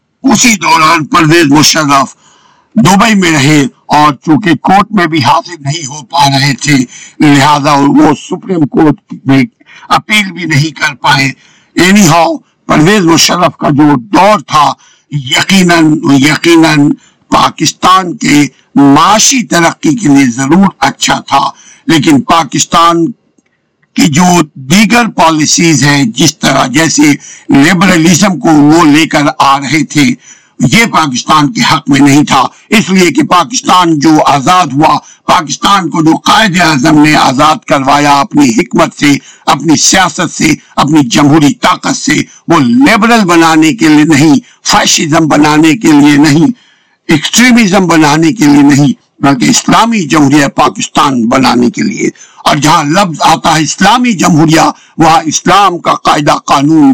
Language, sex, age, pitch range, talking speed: Urdu, male, 60-79, 150-215 Hz, 140 wpm